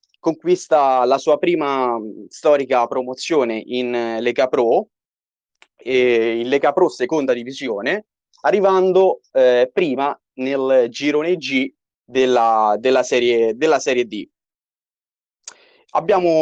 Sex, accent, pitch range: male, native, 120-155 Hz